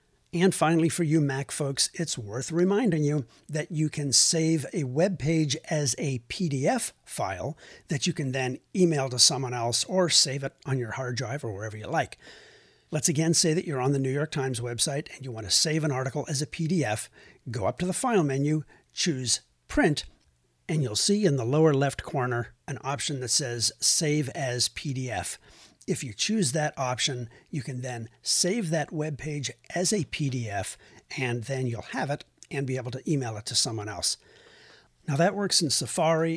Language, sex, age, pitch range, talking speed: English, male, 50-69, 125-165 Hz, 195 wpm